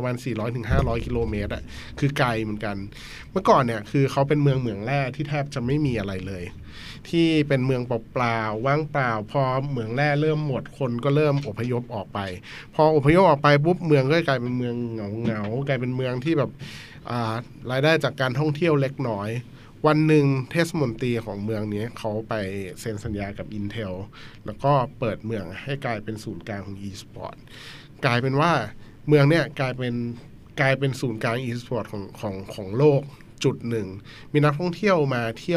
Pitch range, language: 110-140 Hz, Thai